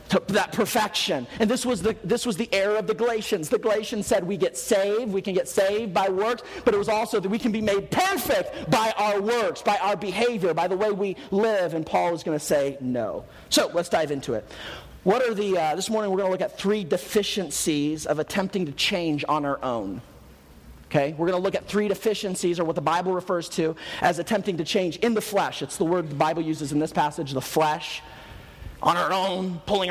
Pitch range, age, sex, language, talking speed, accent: 155-215 Hz, 40-59, male, English, 225 wpm, American